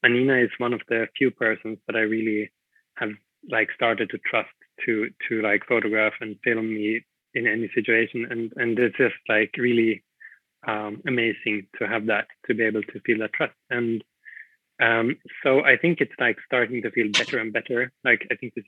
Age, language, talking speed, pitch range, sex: 20-39, Swedish, 195 wpm, 110-125 Hz, male